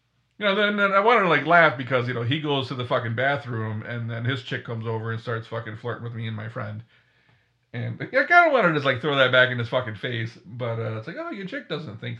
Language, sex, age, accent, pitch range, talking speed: English, male, 40-59, American, 115-135 Hz, 280 wpm